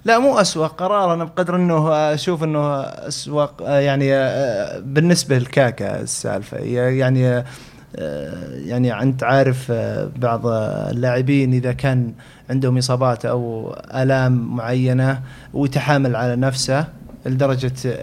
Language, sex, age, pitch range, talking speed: Arabic, male, 20-39, 125-150 Hz, 105 wpm